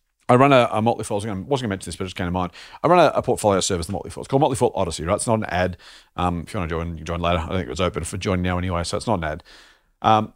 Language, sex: English, male